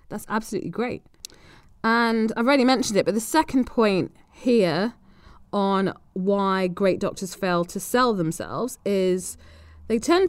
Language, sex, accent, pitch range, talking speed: English, female, British, 175-220 Hz, 140 wpm